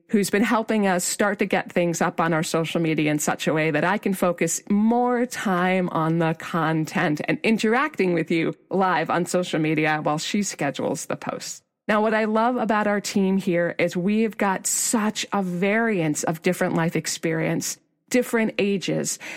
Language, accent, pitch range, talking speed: English, American, 170-215 Hz, 185 wpm